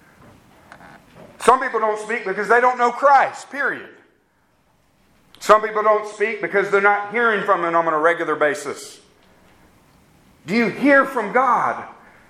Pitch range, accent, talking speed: 190-255 Hz, American, 140 wpm